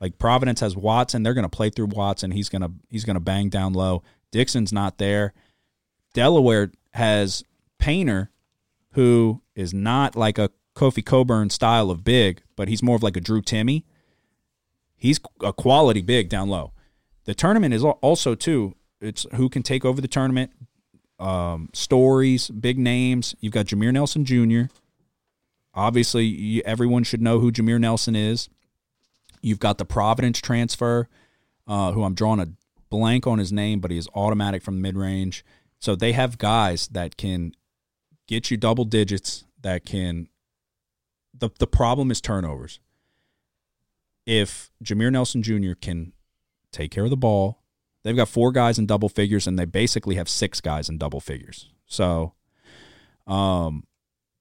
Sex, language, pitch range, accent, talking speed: male, English, 95-120 Hz, American, 160 wpm